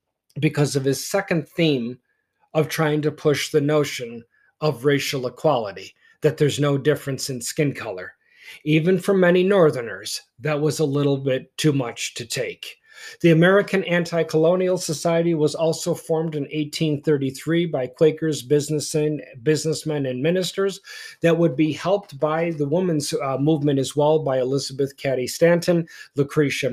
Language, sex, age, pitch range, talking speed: English, male, 40-59, 145-170 Hz, 140 wpm